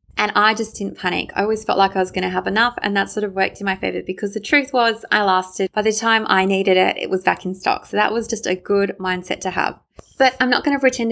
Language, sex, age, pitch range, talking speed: English, female, 20-39, 185-225 Hz, 295 wpm